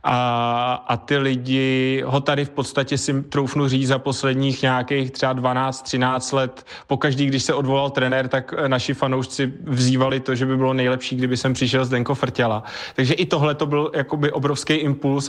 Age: 20-39